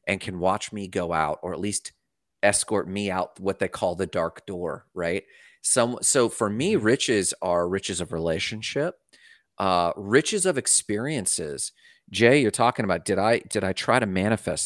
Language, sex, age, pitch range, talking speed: English, male, 30-49, 95-130 Hz, 175 wpm